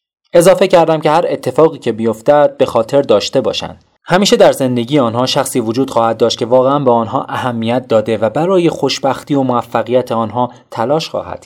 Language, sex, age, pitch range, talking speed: Persian, male, 30-49, 115-160 Hz, 175 wpm